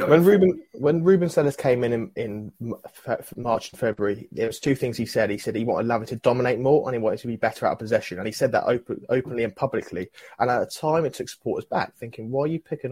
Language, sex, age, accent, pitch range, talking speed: English, male, 20-39, British, 105-120 Hz, 260 wpm